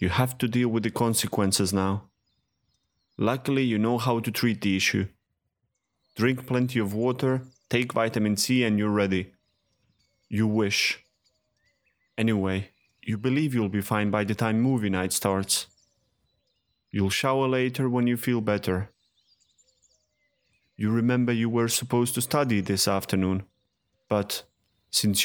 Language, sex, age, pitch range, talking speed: English, male, 30-49, 100-125 Hz, 140 wpm